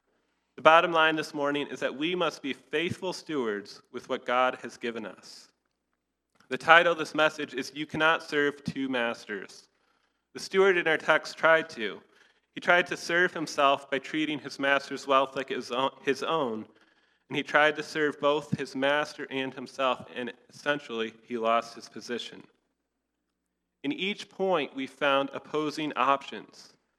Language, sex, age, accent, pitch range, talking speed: English, male, 30-49, American, 125-155 Hz, 160 wpm